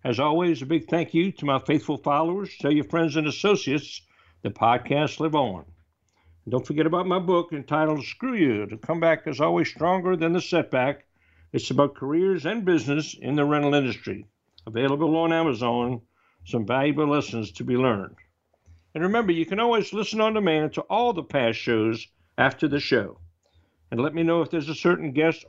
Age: 60-79